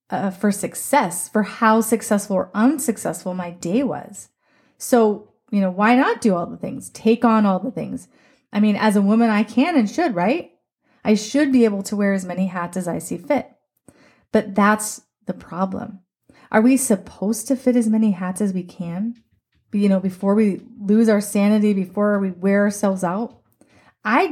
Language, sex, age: English, female, 30-49